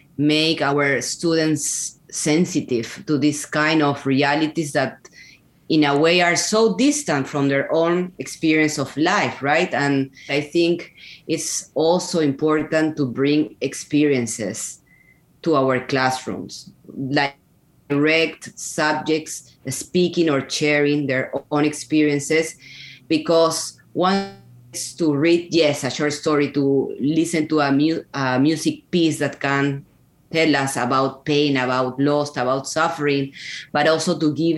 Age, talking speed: 20-39, 130 wpm